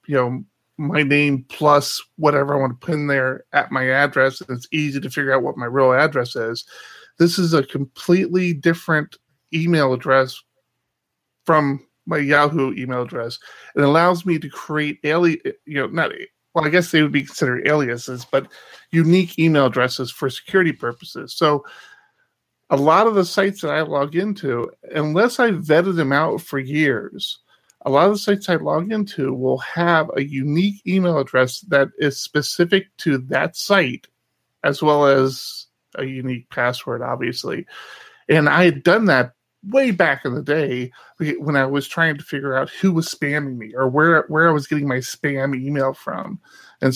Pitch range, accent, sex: 135-170 Hz, American, male